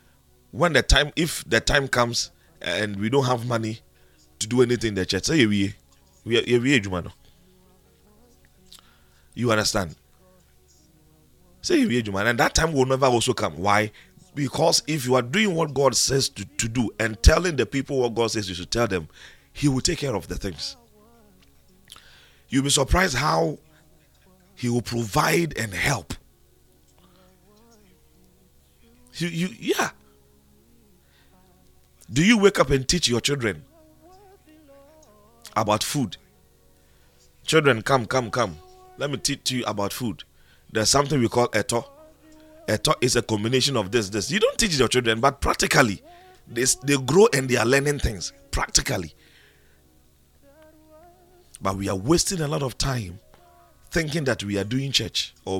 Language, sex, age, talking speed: English, male, 40-59, 150 wpm